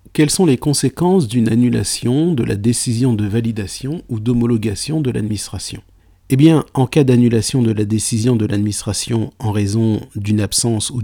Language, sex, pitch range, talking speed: French, male, 100-125 Hz, 165 wpm